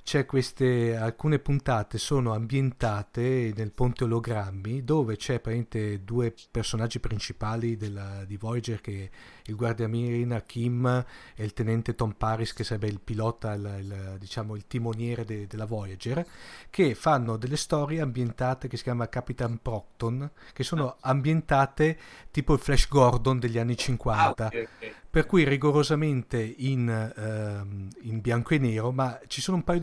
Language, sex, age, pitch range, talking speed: Italian, male, 40-59, 115-140 Hz, 145 wpm